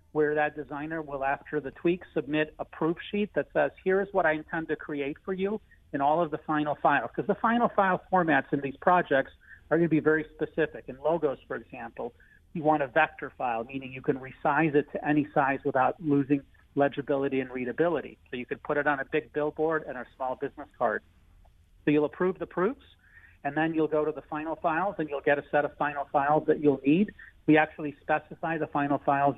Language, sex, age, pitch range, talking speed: English, male, 40-59, 140-160 Hz, 220 wpm